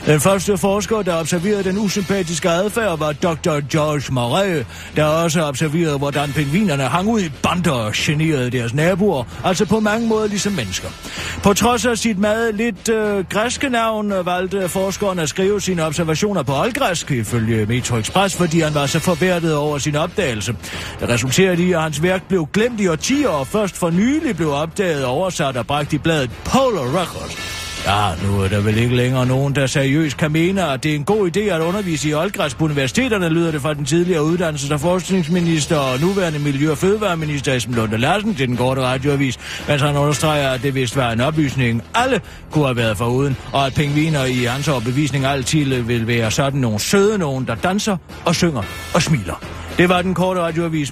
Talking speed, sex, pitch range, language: 195 wpm, male, 130-185 Hz, Danish